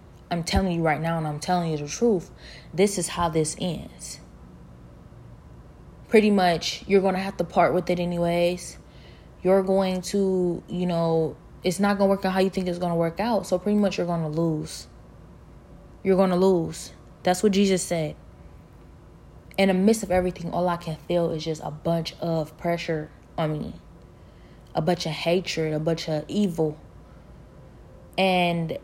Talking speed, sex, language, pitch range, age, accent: 180 wpm, female, English, 160-195 Hz, 20-39, American